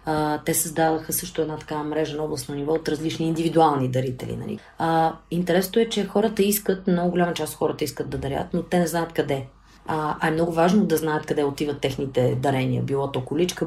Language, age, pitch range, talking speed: Bulgarian, 30-49, 145-175 Hz, 210 wpm